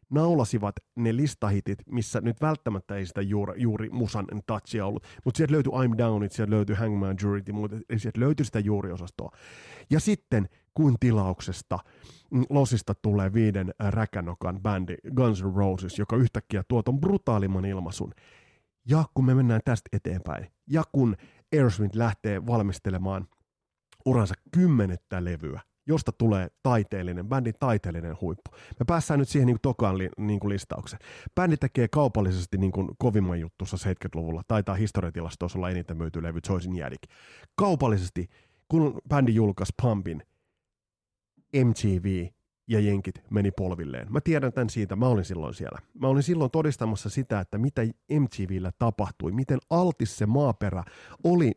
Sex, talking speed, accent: male, 145 wpm, native